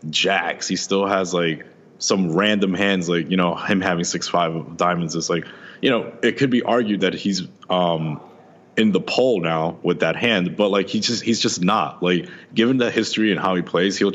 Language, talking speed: English, 210 wpm